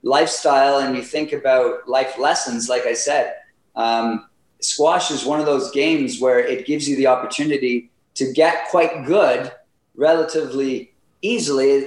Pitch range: 125-150 Hz